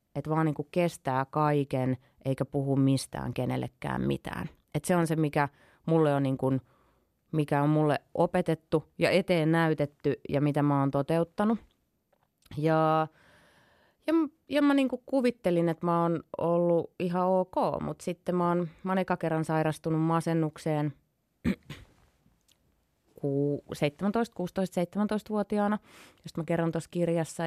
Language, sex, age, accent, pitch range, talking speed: Finnish, female, 30-49, native, 145-175 Hz, 120 wpm